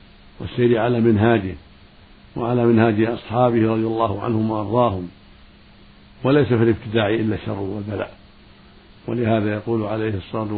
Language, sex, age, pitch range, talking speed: Arabic, male, 60-79, 100-120 Hz, 115 wpm